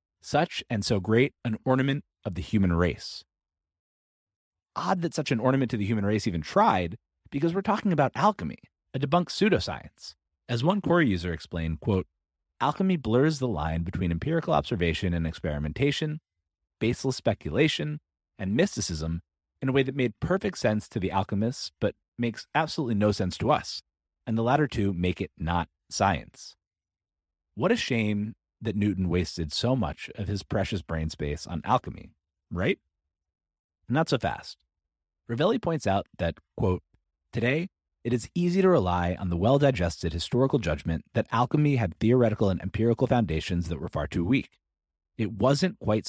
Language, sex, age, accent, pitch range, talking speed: English, male, 30-49, American, 85-130 Hz, 160 wpm